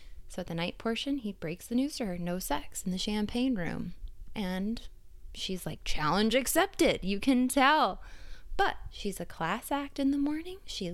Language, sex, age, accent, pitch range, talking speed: English, female, 20-39, American, 185-255 Hz, 185 wpm